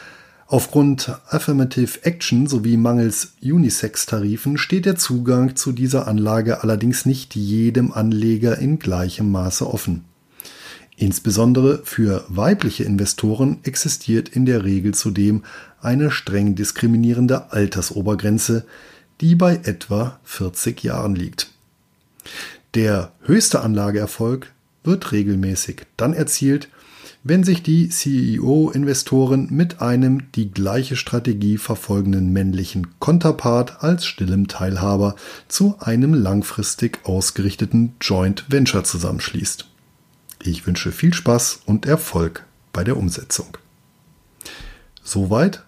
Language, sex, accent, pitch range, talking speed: German, male, German, 100-140 Hz, 105 wpm